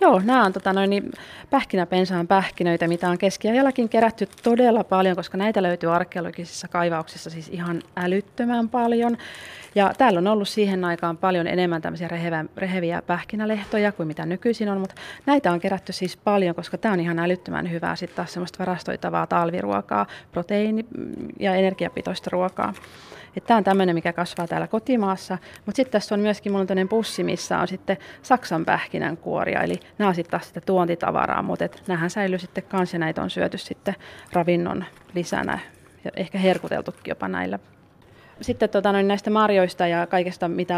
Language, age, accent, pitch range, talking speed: Finnish, 30-49, native, 170-200 Hz, 155 wpm